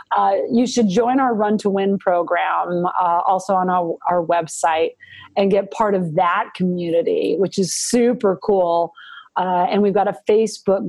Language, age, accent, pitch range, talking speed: English, 40-59, American, 190-235 Hz, 170 wpm